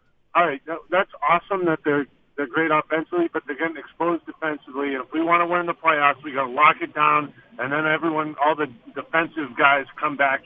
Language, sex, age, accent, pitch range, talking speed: English, male, 50-69, American, 140-170 Hz, 210 wpm